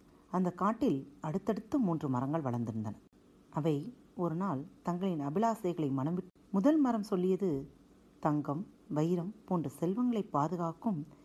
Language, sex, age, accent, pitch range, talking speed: Tamil, female, 40-59, native, 160-245 Hz, 110 wpm